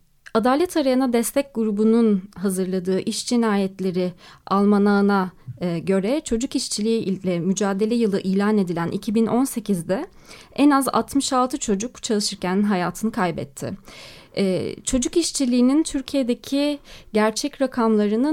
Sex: female